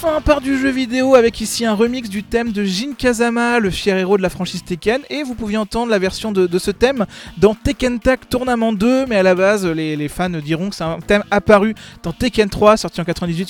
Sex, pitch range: male, 180-215 Hz